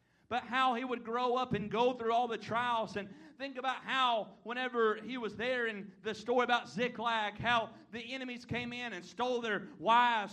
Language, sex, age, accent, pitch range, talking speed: English, male, 40-59, American, 235-260 Hz, 200 wpm